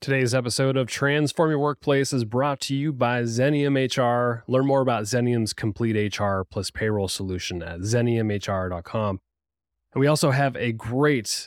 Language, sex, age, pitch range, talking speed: English, male, 20-39, 105-130 Hz, 155 wpm